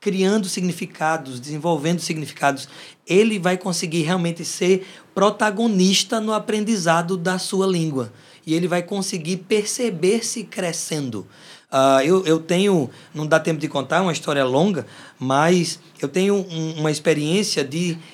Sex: male